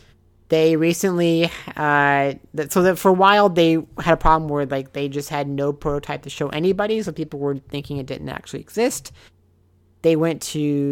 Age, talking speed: 30-49, 185 wpm